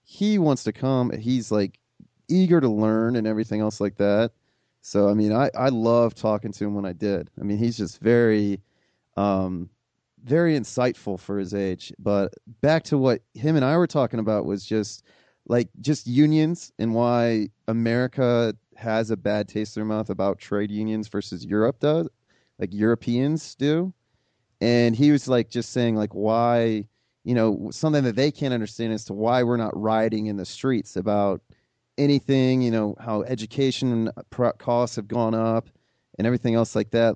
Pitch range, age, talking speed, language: 105-130 Hz, 30-49, 180 wpm, English